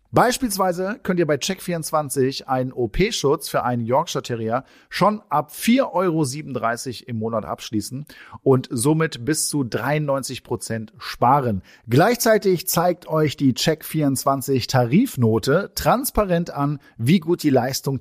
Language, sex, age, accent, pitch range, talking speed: German, male, 40-59, German, 125-175 Hz, 120 wpm